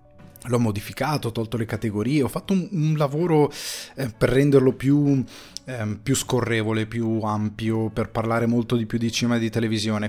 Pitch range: 100-115 Hz